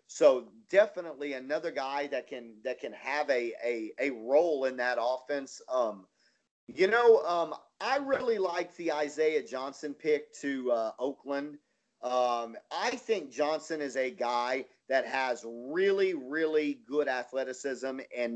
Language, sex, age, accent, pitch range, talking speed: English, male, 40-59, American, 130-170 Hz, 145 wpm